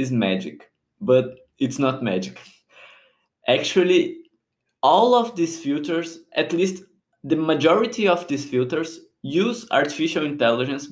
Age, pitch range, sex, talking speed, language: 20-39, 130-175 Hz, male, 115 wpm, English